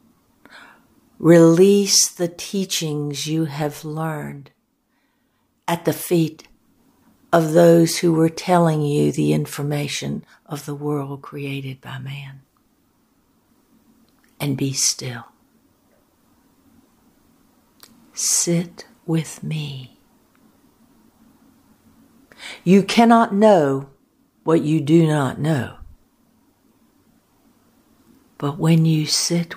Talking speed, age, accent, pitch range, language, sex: 85 wpm, 60-79, American, 150-250 Hz, English, female